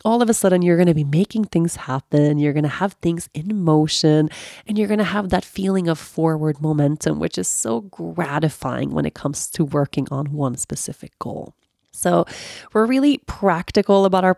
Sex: female